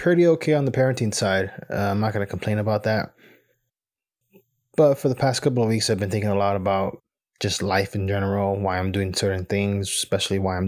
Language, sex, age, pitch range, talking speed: English, male, 20-39, 100-125 Hz, 220 wpm